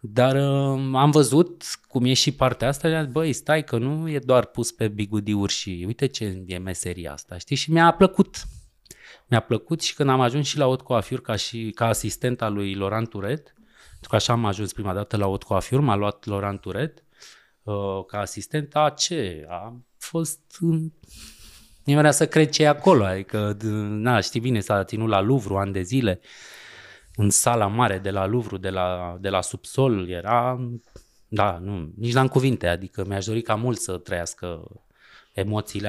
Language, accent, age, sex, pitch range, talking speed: Romanian, native, 20-39, male, 100-140 Hz, 185 wpm